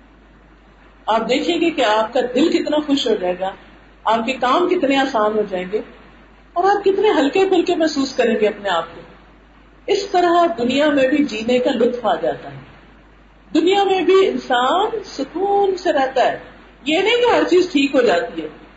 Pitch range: 240-360 Hz